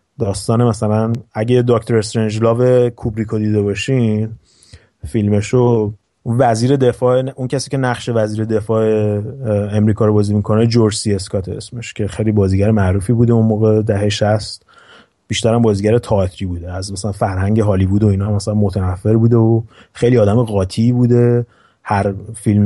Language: Persian